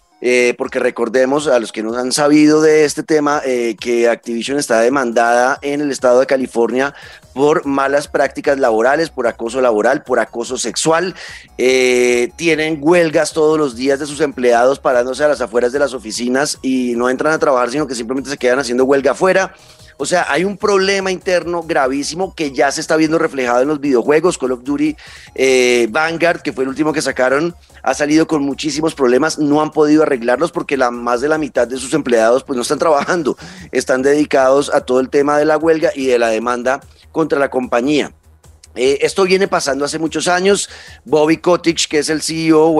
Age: 30-49